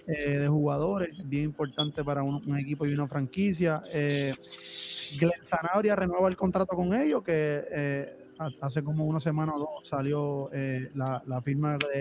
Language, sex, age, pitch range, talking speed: Spanish, male, 20-39, 150-180 Hz, 170 wpm